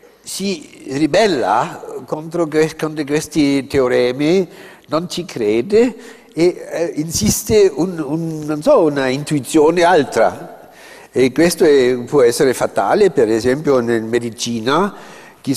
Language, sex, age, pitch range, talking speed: Italian, male, 60-79, 125-175 Hz, 110 wpm